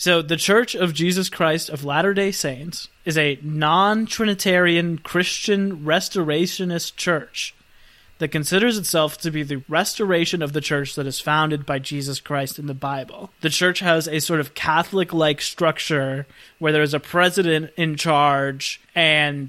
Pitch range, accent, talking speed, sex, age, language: 145-180 Hz, American, 155 wpm, male, 20-39, English